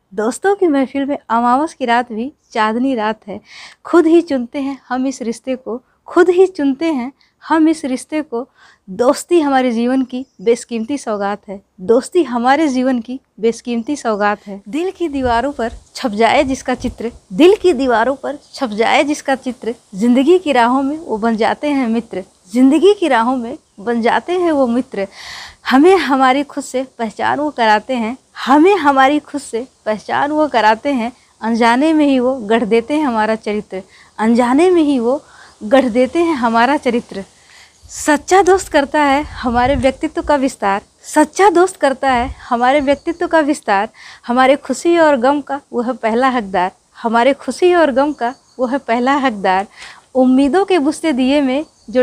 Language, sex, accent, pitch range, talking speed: Hindi, female, native, 235-295 Hz, 170 wpm